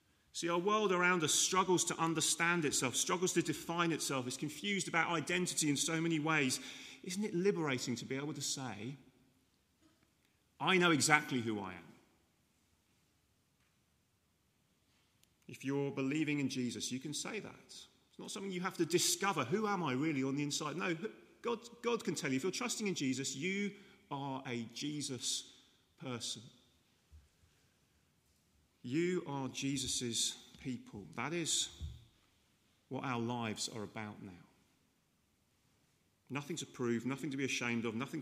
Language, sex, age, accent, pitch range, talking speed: English, male, 30-49, British, 120-160 Hz, 150 wpm